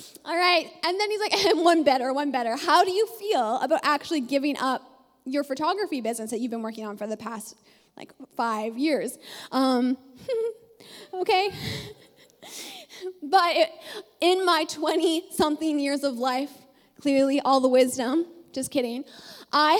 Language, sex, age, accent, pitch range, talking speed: English, female, 20-39, American, 260-335 Hz, 145 wpm